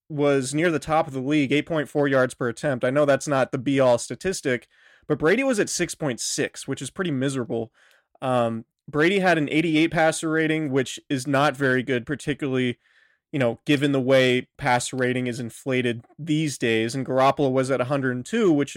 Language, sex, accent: English, male, American